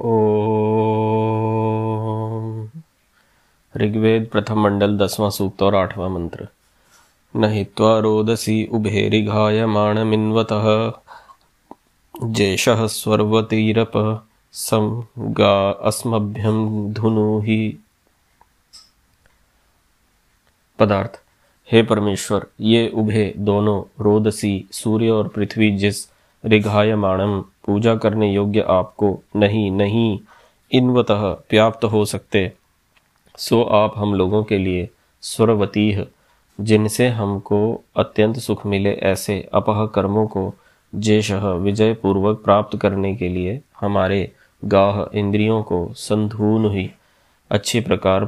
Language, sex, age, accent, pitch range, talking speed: Hindi, male, 20-39, native, 100-110 Hz, 80 wpm